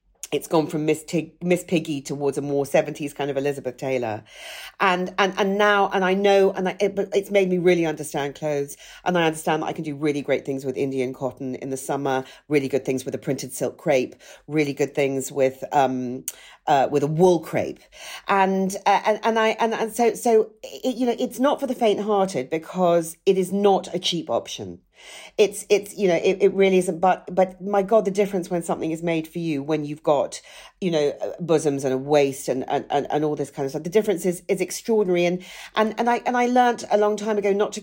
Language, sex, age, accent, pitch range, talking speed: English, female, 40-59, British, 150-200 Hz, 230 wpm